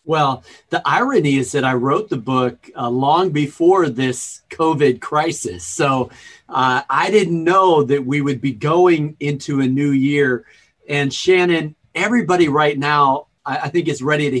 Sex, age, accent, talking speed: male, 40-59, American, 165 wpm